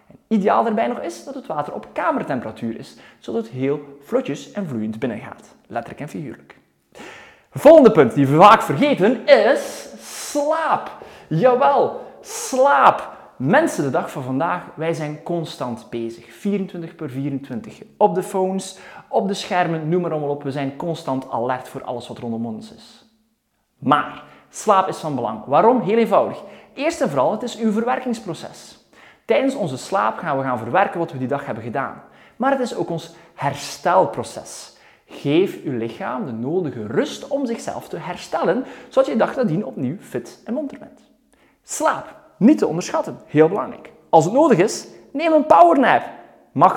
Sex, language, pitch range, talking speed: male, Dutch, 150-240 Hz, 165 wpm